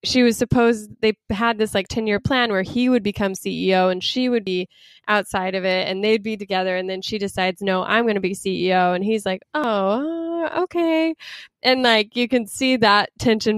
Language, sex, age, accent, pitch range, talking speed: English, female, 20-39, American, 185-230 Hz, 210 wpm